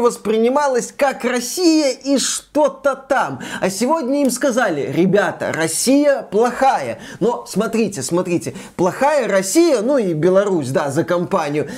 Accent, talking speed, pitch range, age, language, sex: native, 120 wpm, 200-270 Hz, 20-39, Russian, male